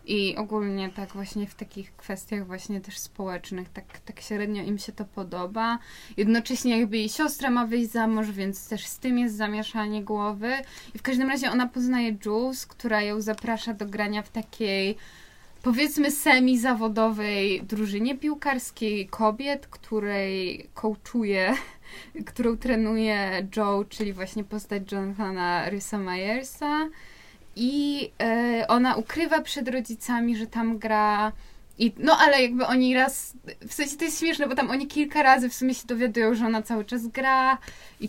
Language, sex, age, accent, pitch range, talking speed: Polish, female, 20-39, native, 210-250 Hz, 155 wpm